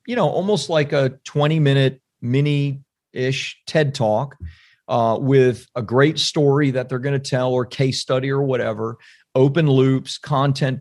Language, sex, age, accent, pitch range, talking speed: English, male, 40-59, American, 125-150 Hz, 150 wpm